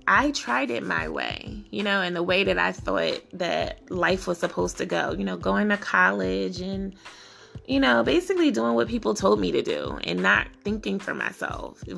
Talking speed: 205 wpm